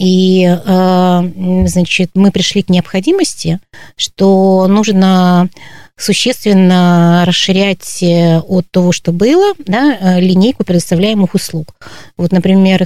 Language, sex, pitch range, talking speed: Russian, female, 175-200 Hz, 95 wpm